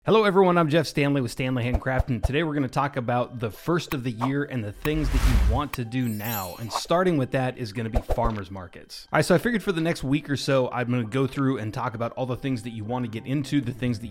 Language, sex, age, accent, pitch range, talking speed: English, male, 30-49, American, 115-145 Hz, 300 wpm